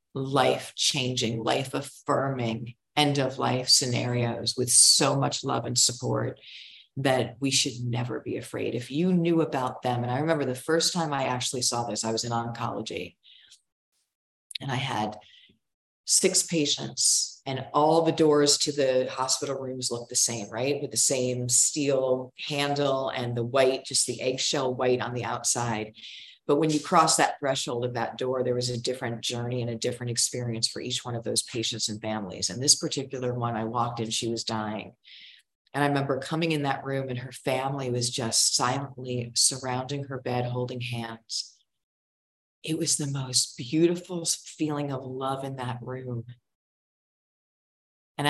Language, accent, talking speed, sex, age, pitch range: English, American, 165 wpm, female, 40-59, 120-145 Hz